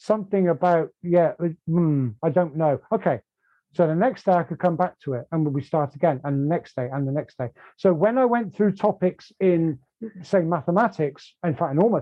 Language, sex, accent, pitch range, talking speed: English, male, British, 145-185 Hz, 215 wpm